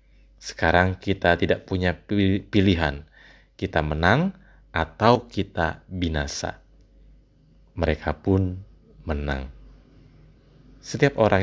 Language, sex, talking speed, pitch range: Indonesian, male, 80 wpm, 80-100 Hz